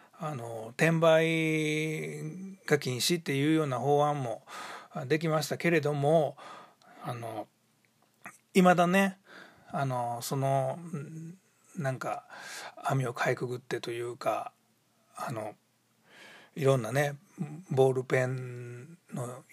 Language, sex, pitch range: Japanese, male, 135-180 Hz